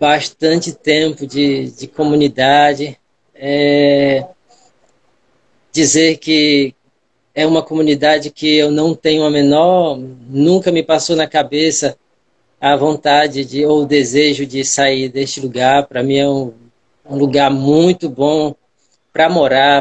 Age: 20-39